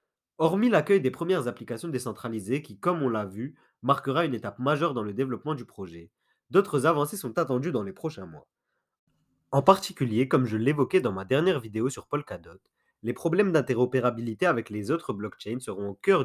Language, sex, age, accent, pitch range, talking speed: French, male, 30-49, French, 115-170 Hz, 180 wpm